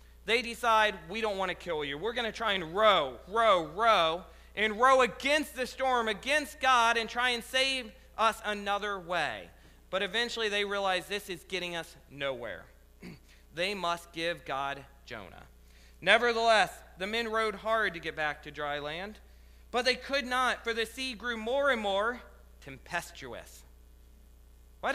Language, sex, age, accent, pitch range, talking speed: English, male, 40-59, American, 160-235 Hz, 165 wpm